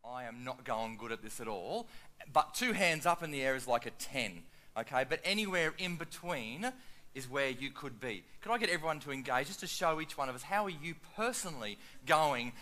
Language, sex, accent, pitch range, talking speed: English, male, Australian, 140-205 Hz, 230 wpm